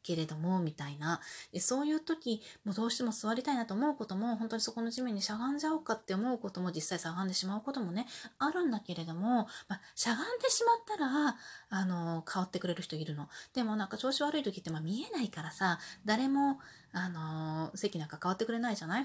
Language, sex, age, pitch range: Japanese, female, 30-49, 165-235 Hz